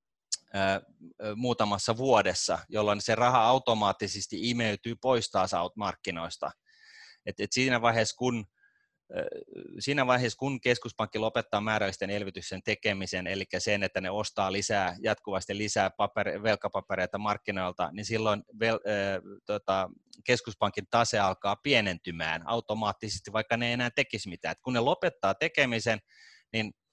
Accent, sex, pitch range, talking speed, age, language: native, male, 100-120 Hz, 125 wpm, 30-49, Finnish